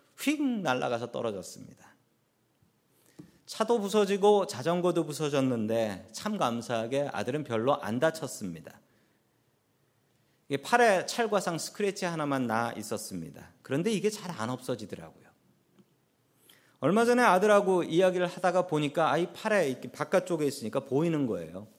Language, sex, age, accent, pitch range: Korean, male, 40-59, native, 125-190 Hz